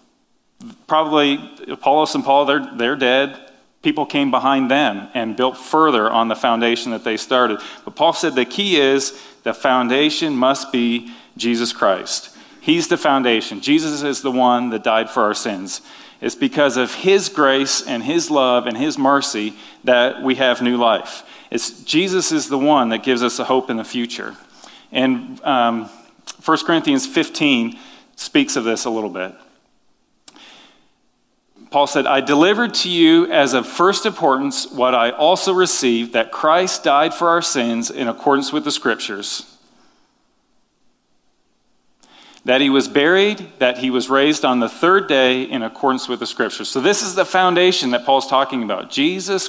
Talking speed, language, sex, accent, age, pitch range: 165 wpm, English, male, American, 40-59, 125-185 Hz